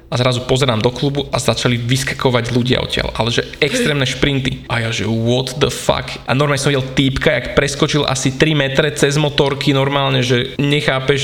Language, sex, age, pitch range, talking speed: Slovak, male, 20-39, 125-145 Hz, 185 wpm